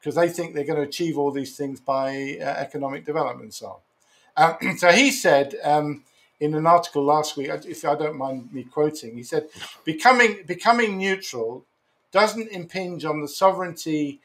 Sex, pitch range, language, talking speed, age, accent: male, 140-190 Hz, English, 180 wpm, 50-69, British